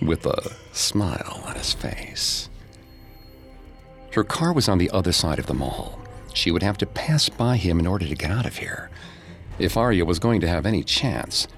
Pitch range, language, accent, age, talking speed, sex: 85-105 Hz, English, American, 50-69, 195 wpm, male